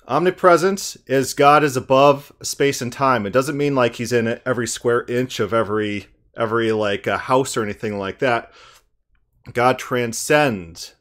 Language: English